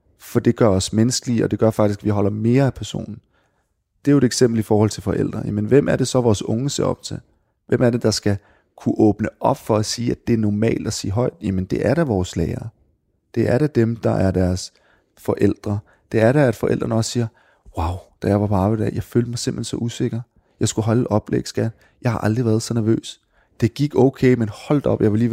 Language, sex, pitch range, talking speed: Danish, male, 105-120 Hz, 250 wpm